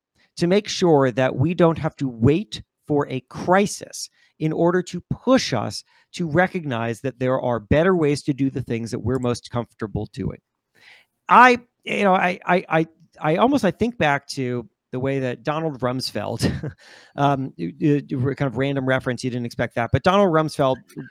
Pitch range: 125-170 Hz